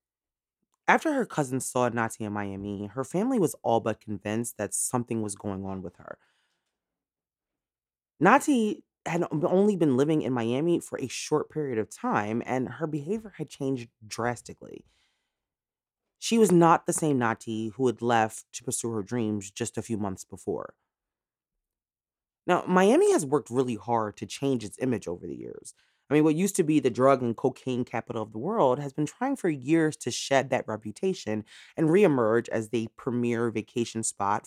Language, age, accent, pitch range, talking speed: English, 30-49, American, 115-155 Hz, 175 wpm